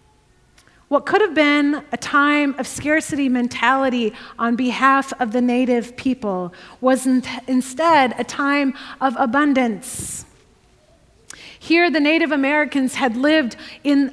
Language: English